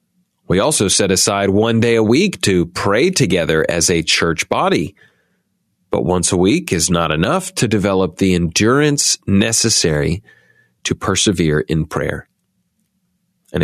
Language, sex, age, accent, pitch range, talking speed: English, male, 40-59, American, 100-135 Hz, 140 wpm